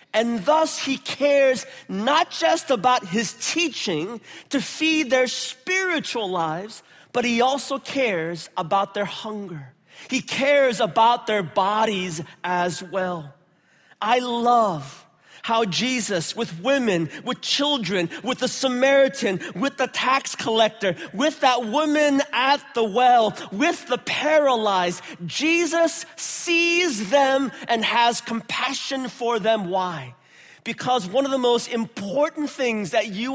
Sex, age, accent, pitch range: male, 30-49, American, 205-280 Hz